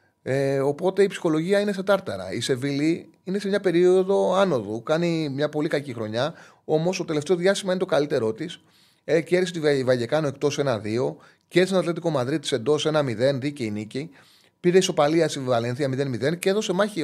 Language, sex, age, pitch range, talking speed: Greek, male, 30-49, 130-185 Hz, 175 wpm